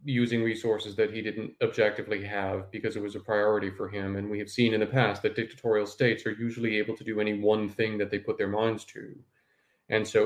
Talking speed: 235 wpm